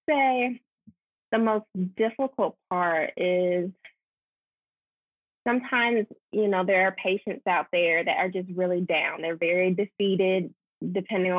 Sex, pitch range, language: female, 175-200 Hz, English